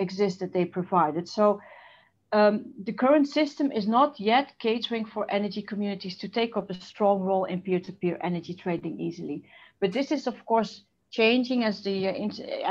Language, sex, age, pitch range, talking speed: English, female, 40-59, 195-235 Hz, 170 wpm